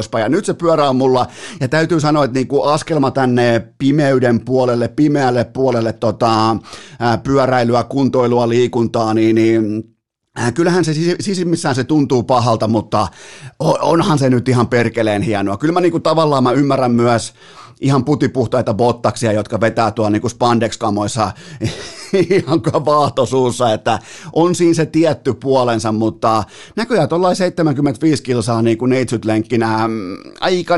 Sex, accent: male, native